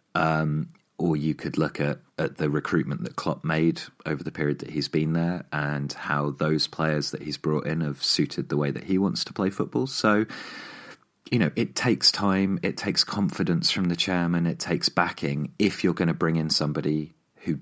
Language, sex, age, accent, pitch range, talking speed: English, male, 30-49, British, 75-85 Hz, 205 wpm